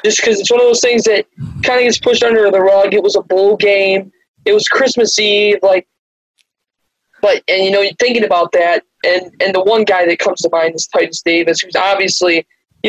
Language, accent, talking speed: English, American, 225 wpm